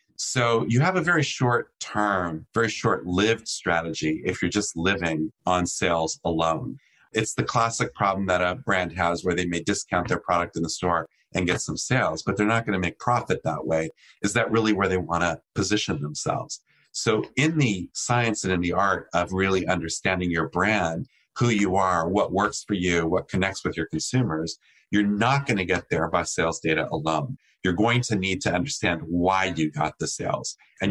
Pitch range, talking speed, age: 85-115 Hz, 195 wpm, 40-59